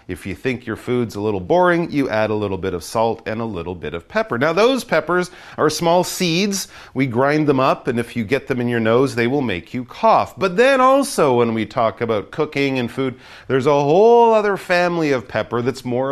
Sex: male